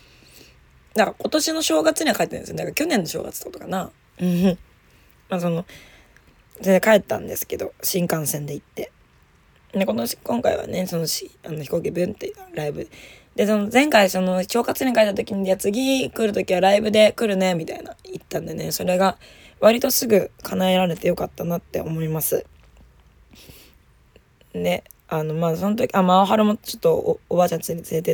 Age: 20-39